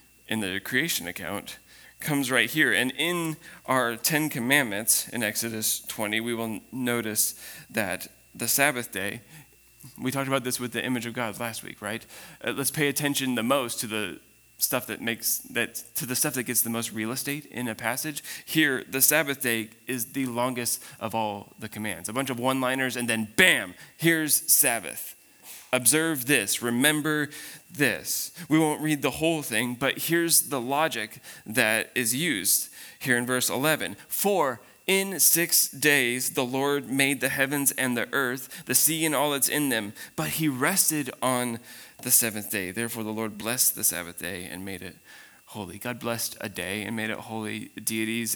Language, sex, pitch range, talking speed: English, male, 110-145 Hz, 180 wpm